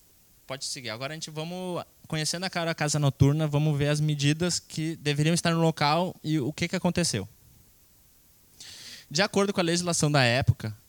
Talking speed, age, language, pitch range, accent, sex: 175 wpm, 20-39, Portuguese, 125-155 Hz, Brazilian, male